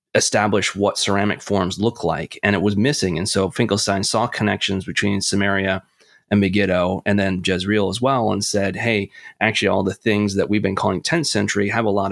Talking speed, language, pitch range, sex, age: 200 wpm, English, 95-110 Hz, male, 30-49